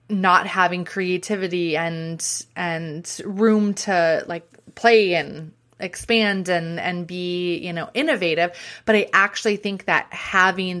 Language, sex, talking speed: English, female, 130 wpm